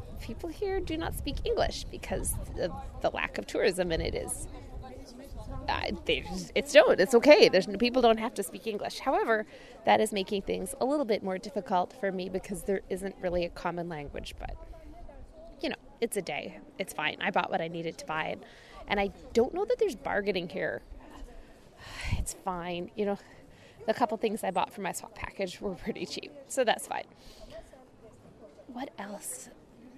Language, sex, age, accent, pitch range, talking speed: English, female, 20-39, American, 190-265 Hz, 185 wpm